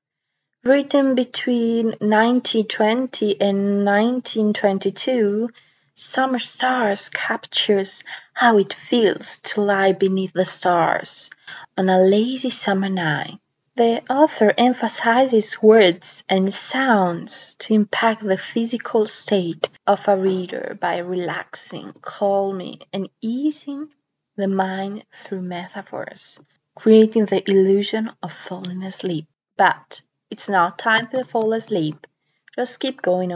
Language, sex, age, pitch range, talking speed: English, female, 20-39, 190-230 Hz, 110 wpm